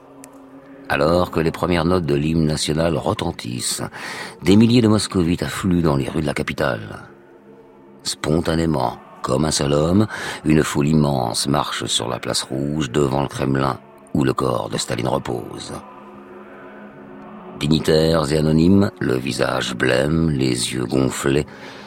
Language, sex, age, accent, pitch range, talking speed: French, male, 50-69, French, 70-90 Hz, 140 wpm